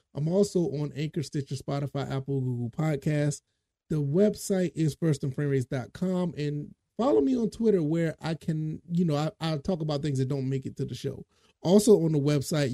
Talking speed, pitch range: 185 wpm, 135-160 Hz